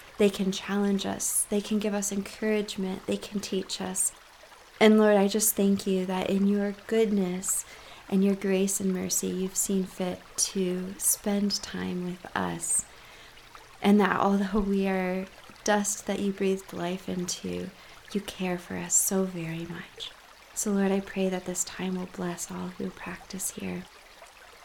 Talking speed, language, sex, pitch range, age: 165 wpm, English, female, 185-220 Hz, 20-39